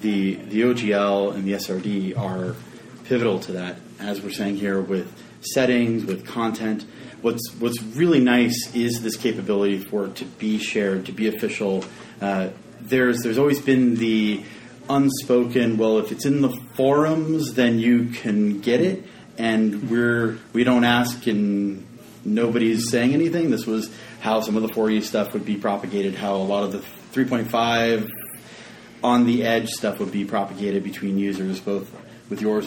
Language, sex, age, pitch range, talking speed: English, male, 30-49, 105-125 Hz, 165 wpm